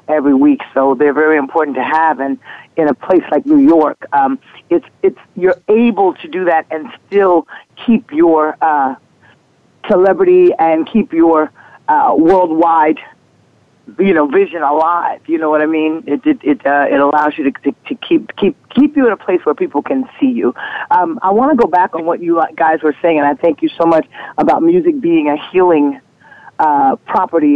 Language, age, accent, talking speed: English, 40-59, American, 195 wpm